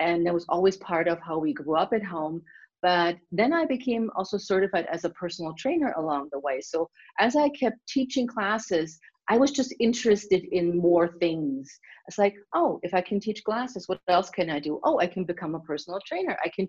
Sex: female